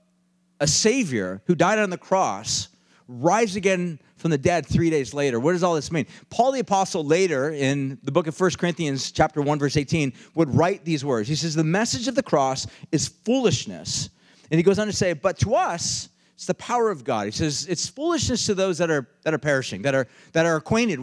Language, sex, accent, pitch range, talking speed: English, male, American, 145-195 Hz, 220 wpm